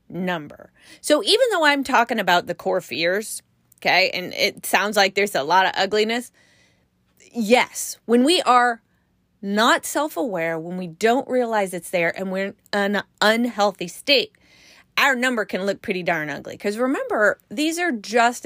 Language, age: English, 30-49